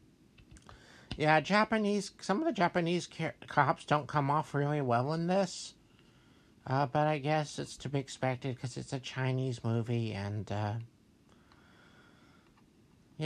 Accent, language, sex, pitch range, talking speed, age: American, English, male, 115-150 Hz, 135 wpm, 60-79